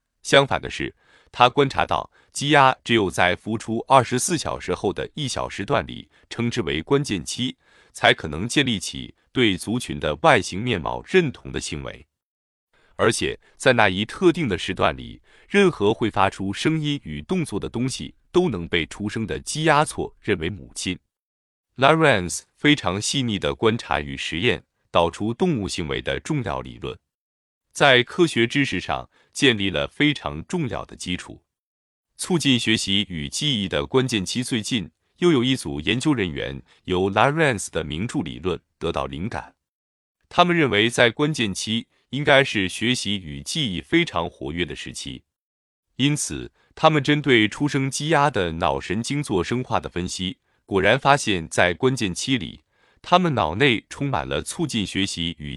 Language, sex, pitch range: Chinese, male, 90-140 Hz